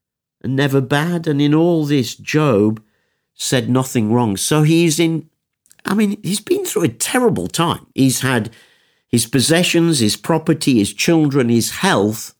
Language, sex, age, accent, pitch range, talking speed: English, male, 50-69, British, 110-155 Hz, 155 wpm